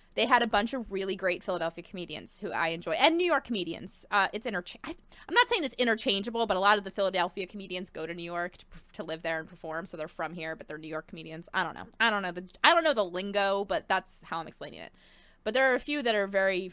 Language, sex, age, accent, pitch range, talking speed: English, female, 20-39, American, 180-260 Hz, 275 wpm